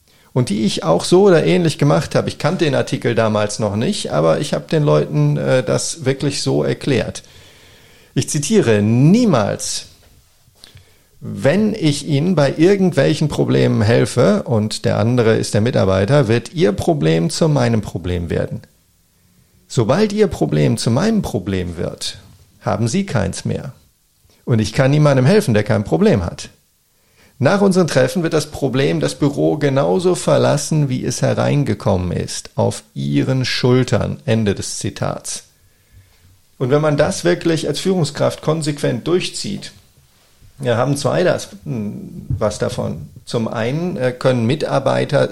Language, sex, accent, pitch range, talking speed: German, male, German, 105-150 Hz, 140 wpm